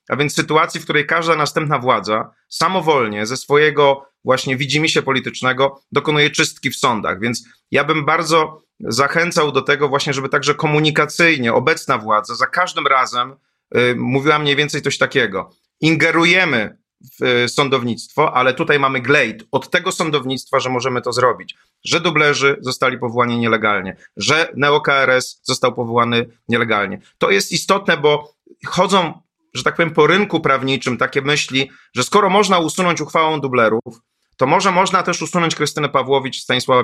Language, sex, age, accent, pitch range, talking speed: Polish, male, 30-49, native, 130-165 Hz, 150 wpm